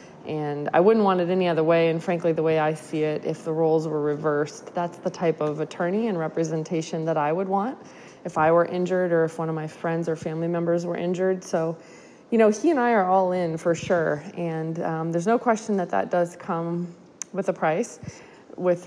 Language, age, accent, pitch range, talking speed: English, 20-39, American, 165-190 Hz, 225 wpm